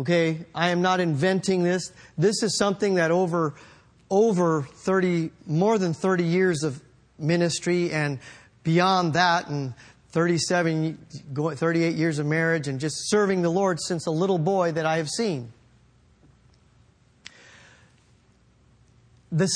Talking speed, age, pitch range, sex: 125 wpm, 40-59, 165-220 Hz, male